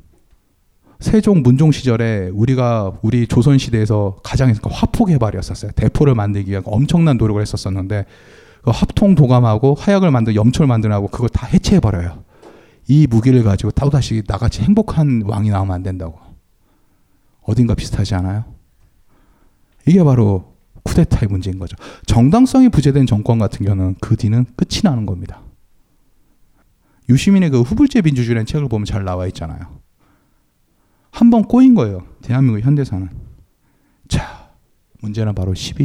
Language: Korean